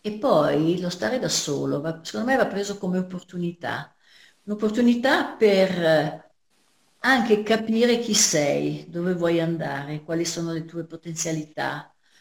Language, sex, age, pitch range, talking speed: Italian, female, 50-69, 155-200 Hz, 130 wpm